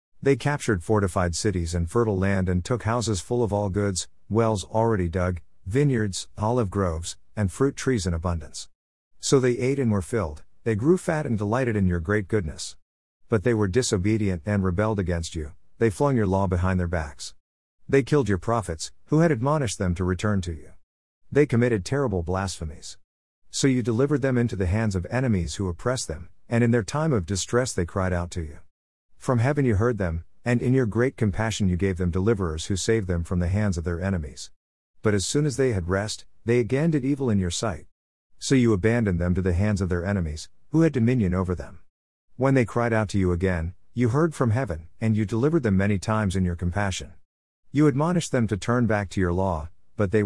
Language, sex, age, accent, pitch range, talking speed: English, male, 50-69, American, 90-120 Hz, 210 wpm